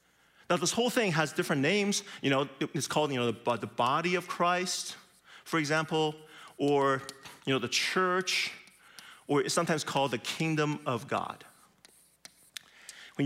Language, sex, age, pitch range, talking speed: English, male, 30-49, 120-170 Hz, 160 wpm